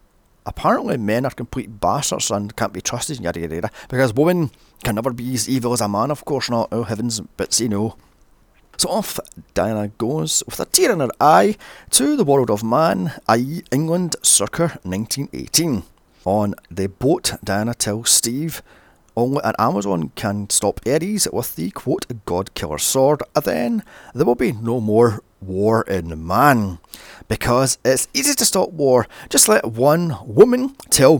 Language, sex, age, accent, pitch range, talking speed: English, male, 30-49, British, 105-145 Hz, 170 wpm